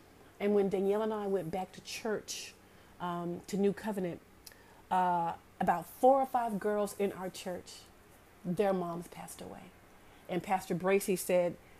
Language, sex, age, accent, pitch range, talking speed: English, female, 40-59, American, 175-220 Hz, 155 wpm